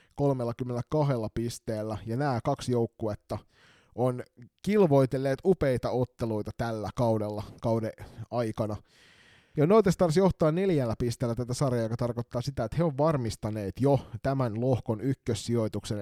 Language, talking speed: Finnish, 120 wpm